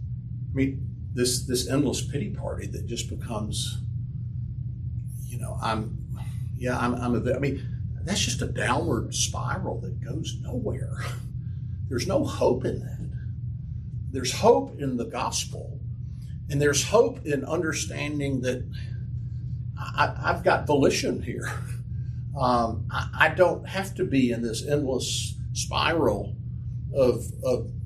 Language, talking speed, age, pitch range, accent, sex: English, 130 wpm, 50-69, 115-125 Hz, American, male